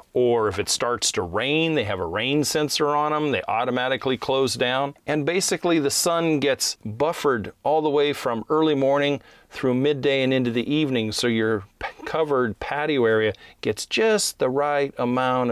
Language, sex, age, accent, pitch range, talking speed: English, male, 40-59, American, 105-140 Hz, 175 wpm